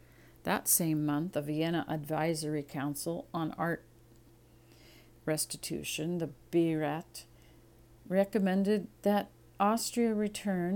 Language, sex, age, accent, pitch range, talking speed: English, female, 50-69, American, 115-170 Hz, 90 wpm